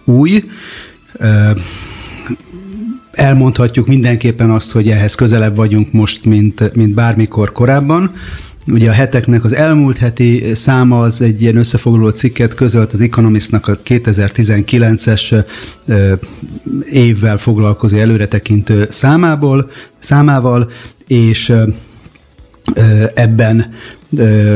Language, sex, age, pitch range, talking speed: Hungarian, male, 30-49, 110-125 Hz, 90 wpm